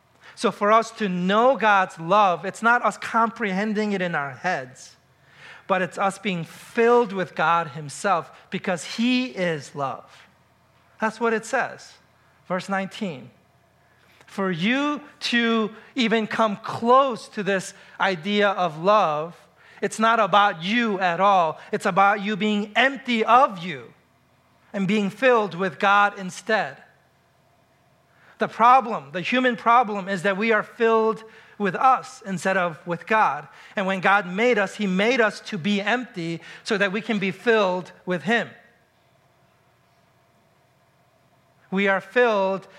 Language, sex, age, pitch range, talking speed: English, male, 40-59, 170-215 Hz, 140 wpm